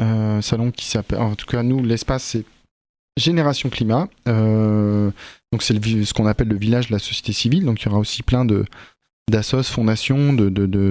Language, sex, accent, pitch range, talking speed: French, male, French, 105-125 Hz, 195 wpm